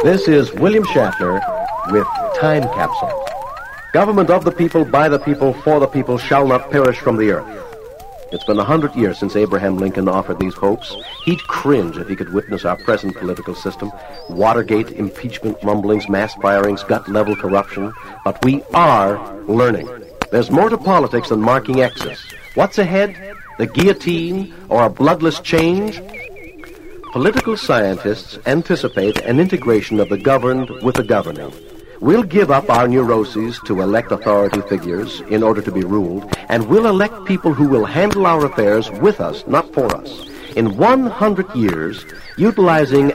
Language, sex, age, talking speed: English, male, 60-79, 160 wpm